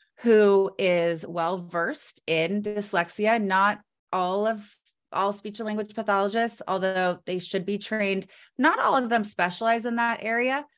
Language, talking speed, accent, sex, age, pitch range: English, 150 wpm, American, female, 30-49, 175-215 Hz